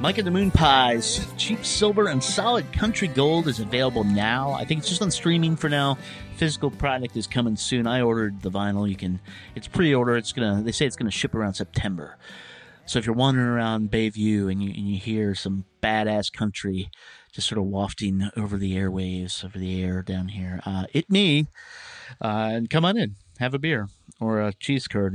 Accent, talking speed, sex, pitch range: American, 205 wpm, male, 100-130 Hz